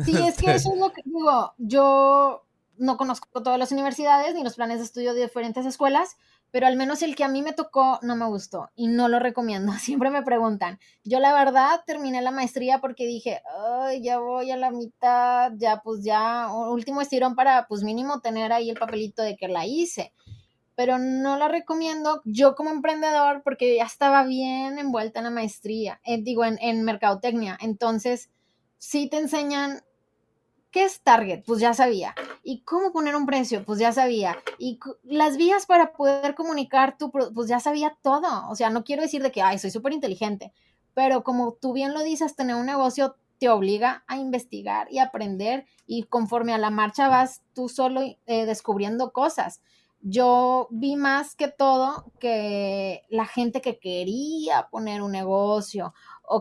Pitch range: 225-275 Hz